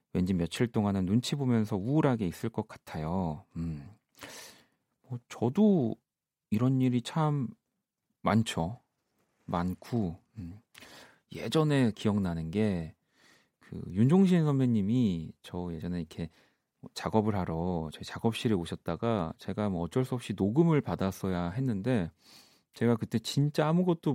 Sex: male